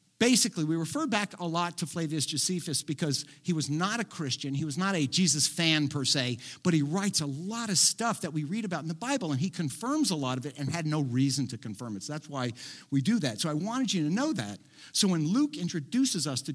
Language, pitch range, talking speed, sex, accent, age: English, 140-190 Hz, 255 wpm, male, American, 50-69